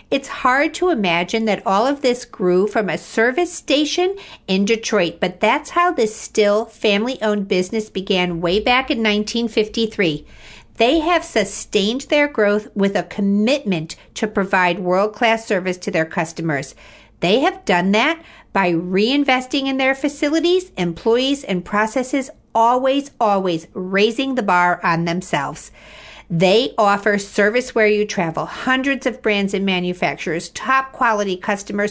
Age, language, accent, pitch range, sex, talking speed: 50-69, English, American, 190-260 Hz, female, 140 wpm